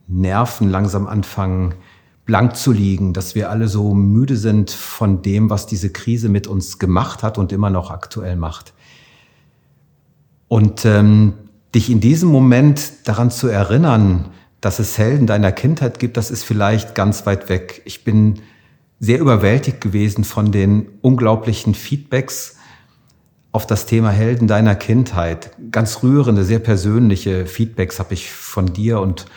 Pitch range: 100-120 Hz